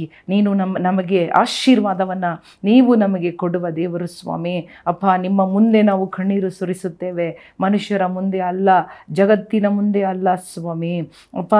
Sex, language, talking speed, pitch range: female, Kannada, 125 wpm, 175-200 Hz